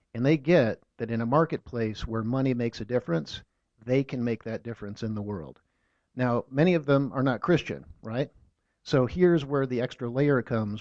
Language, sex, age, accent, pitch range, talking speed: English, male, 50-69, American, 110-135 Hz, 195 wpm